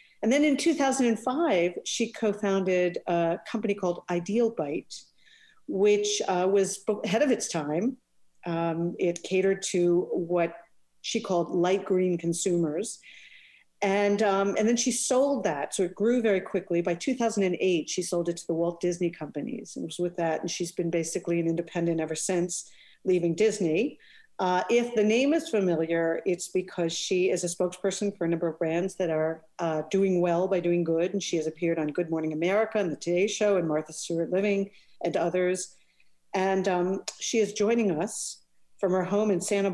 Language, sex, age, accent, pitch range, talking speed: English, female, 50-69, American, 170-205 Hz, 185 wpm